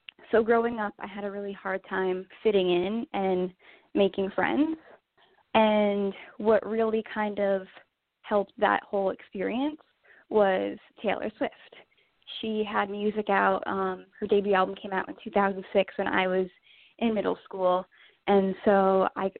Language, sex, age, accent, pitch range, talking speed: English, female, 10-29, American, 195-225 Hz, 145 wpm